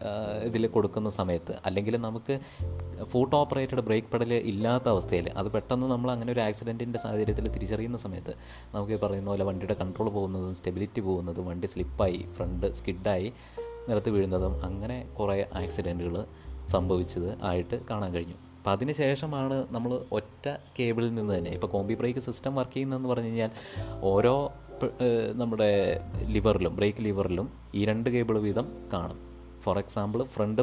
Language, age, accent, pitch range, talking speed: Malayalam, 20-39, native, 95-120 Hz, 140 wpm